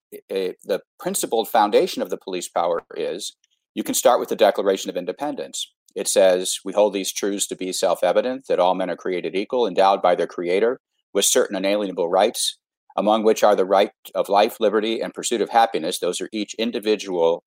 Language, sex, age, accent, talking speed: English, male, 50-69, American, 190 wpm